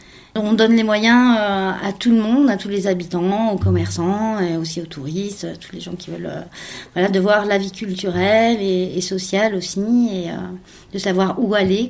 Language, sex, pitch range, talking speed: French, female, 175-205 Hz, 195 wpm